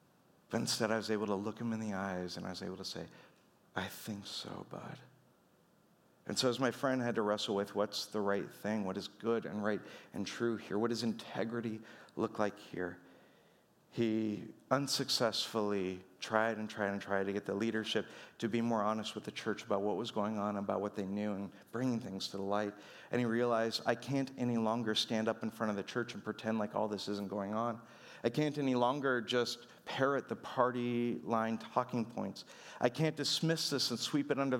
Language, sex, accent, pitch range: English, male, American, 105-125 Hz